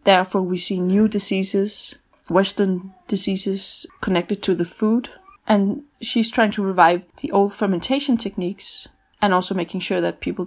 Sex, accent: female, Danish